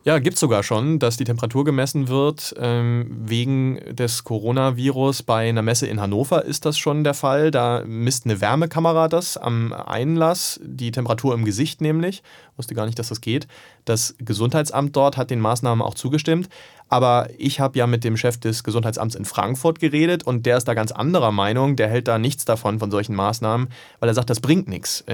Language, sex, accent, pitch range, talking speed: German, male, German, 115-145 Hz, 200 wpm